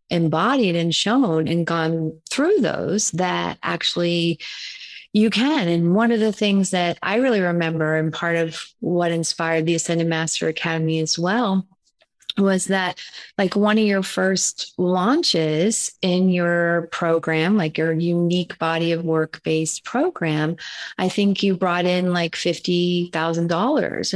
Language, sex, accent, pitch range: English, female, American, 165-195 Hz